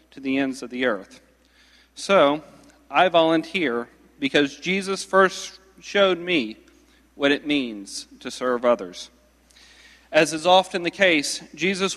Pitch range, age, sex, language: 145-185 Hz, 40-59, male, English